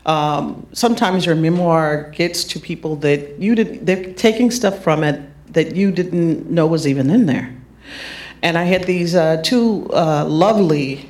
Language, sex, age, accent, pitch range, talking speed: English, female, 50-69, American, 145-175 Hz, 170 wpm